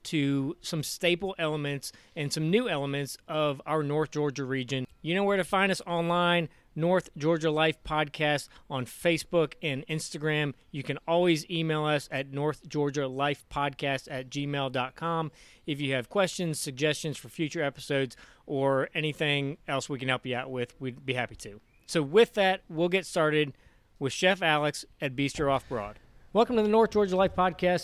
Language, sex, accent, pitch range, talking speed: English, male, American, 130-155 Hz, 165 wpm